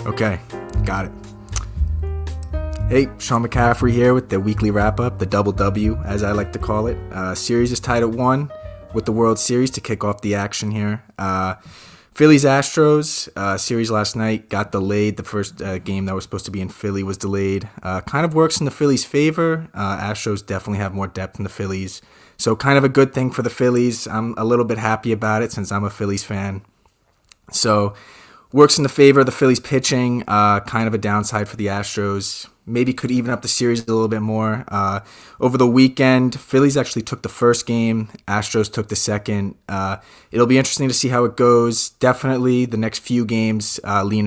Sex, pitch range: male, 100-120 Hz